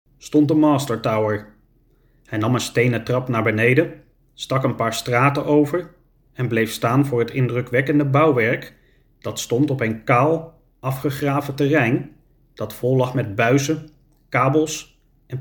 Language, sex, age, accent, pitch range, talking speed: Dutch, male, 30-49, Dutch, 120-150 Hz, 140 wpm